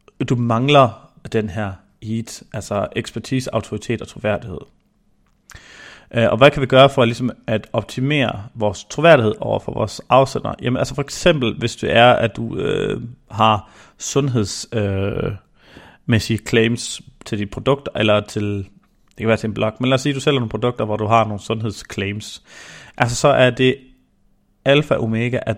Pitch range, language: 105-130 Hz, Danish